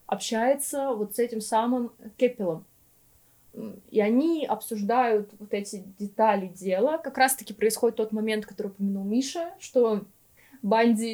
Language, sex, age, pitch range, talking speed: Russian, female, 20-39, 210-250 Hz, 125 wpm